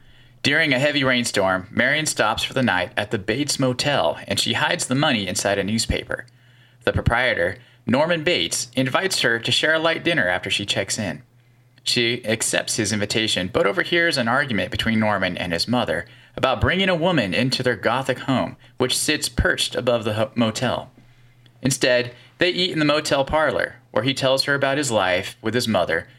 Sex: male